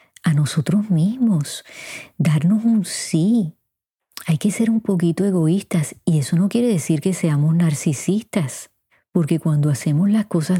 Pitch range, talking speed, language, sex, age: 150-185 Hz, 140 wpm, Spanish, female, 30-49